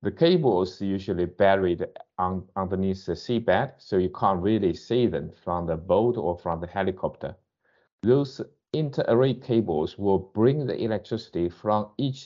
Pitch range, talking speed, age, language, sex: 90-125 Hz, 145 wpm, 50-69, English, male